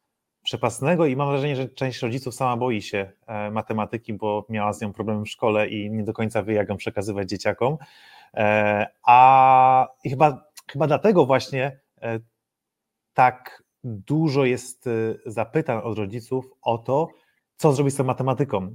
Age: 30-49